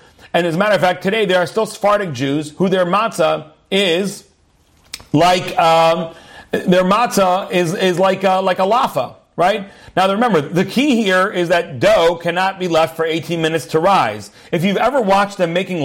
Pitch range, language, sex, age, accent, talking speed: 160-205 Hz, English, male, 40-59, American, 190 wpm